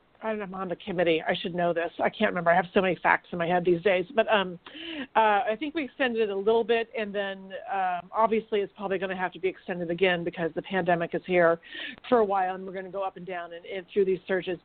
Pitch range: 185-225 Hz